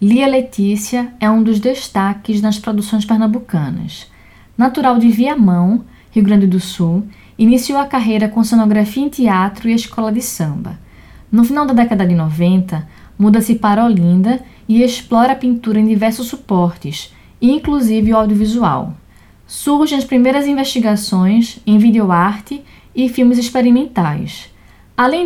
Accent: Brazilian